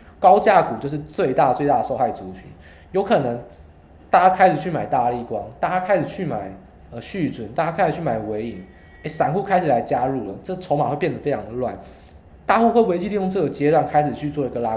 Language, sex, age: Chinese, male, 20-39